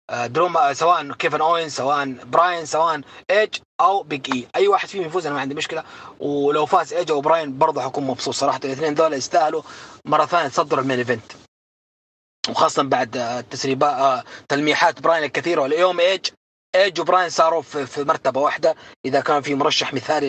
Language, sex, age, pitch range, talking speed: English, male, 20-39, 125-160 Hz, 150 wpm